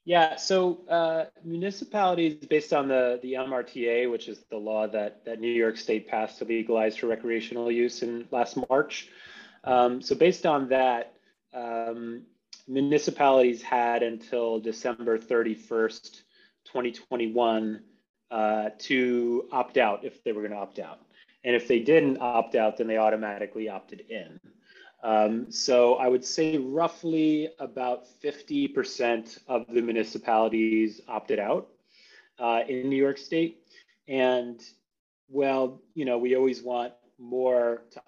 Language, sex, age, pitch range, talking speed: English, male, 30-49, 115-135 Hz, 140 wpm